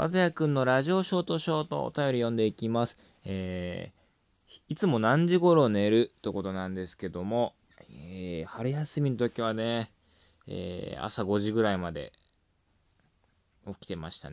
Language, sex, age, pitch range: Japanese, male, 20-39, 90-115 Hz